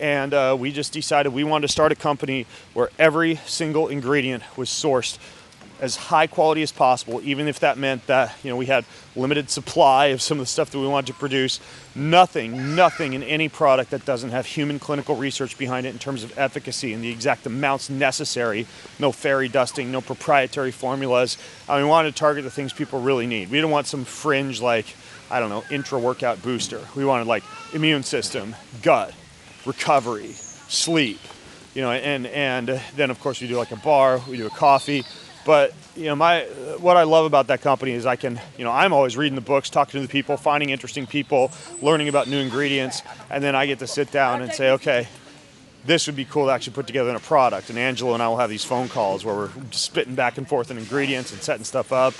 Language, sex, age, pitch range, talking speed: English, male, 30-49, 125-145 Hz, 220 wpm